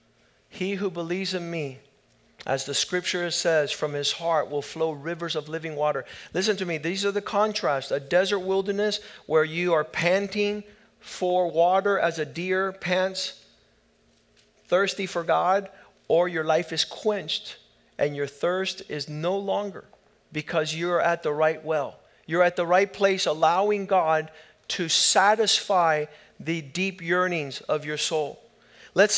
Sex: male